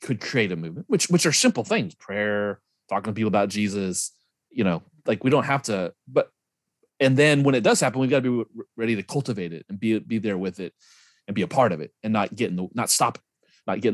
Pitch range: 100-140 Hz